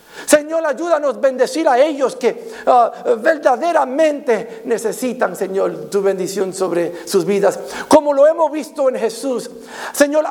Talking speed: 130 wpm